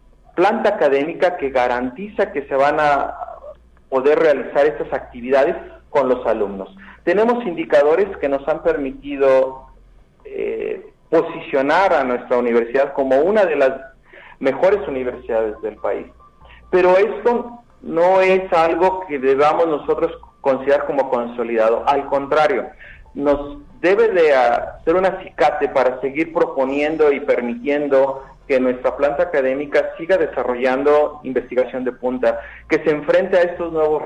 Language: Spanish